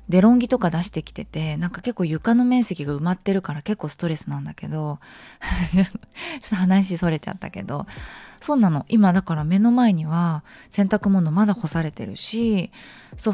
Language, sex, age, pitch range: Japanese, female, 20-39, 155-215 Hz